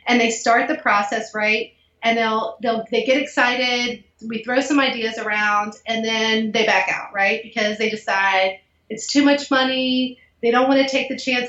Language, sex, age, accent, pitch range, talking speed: English, female, 30-49, American, 215-250 Hz, 195 wpm